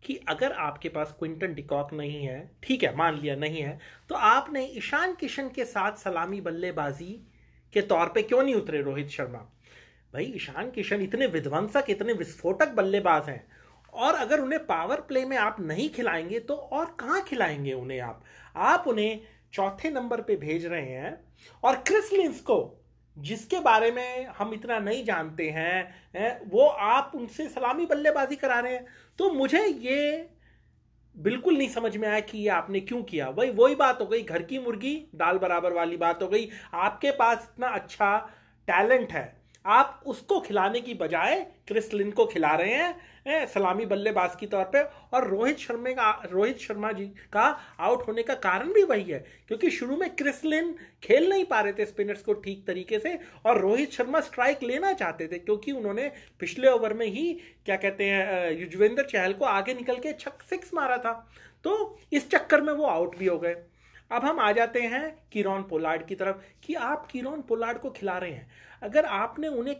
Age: 30-49